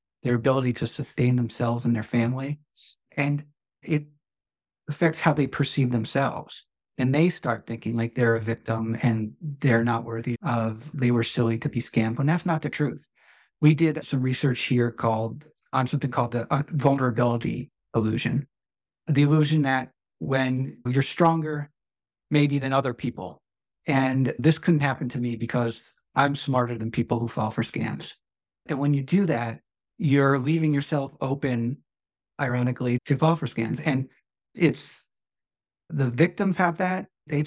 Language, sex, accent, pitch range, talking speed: English, male, American, 120-145 Hz, 155 wpm